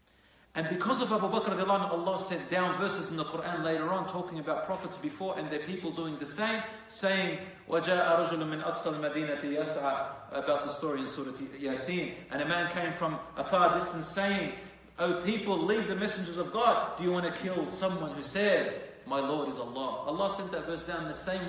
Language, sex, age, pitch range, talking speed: English, male, 40-59, 150-190 Hz, 185 wpm